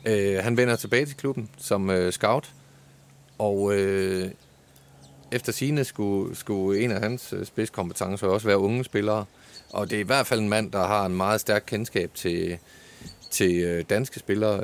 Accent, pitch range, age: native, 95-120 Hz, 30-49